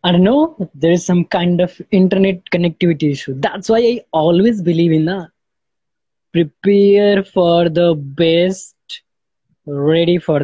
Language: English